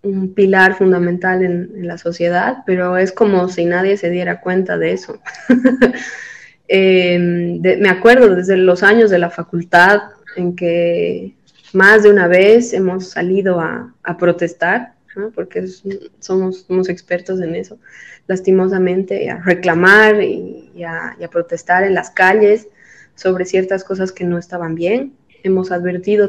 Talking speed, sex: 145 wpm, female